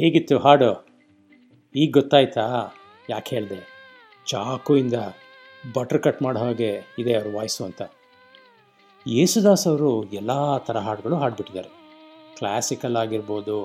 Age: 50-69